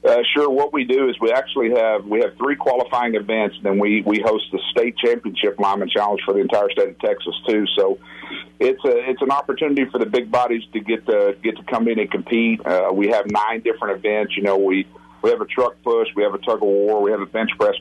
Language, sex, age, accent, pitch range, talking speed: English, male, 50-69, American, 100-130 Hz, 255 wpm